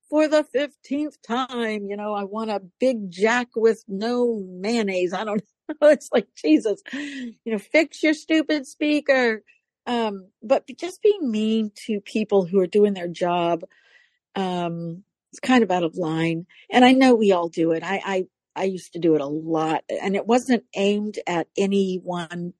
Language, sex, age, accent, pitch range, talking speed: English, female, 60-79, American, 180-230 Hz, 180 wpm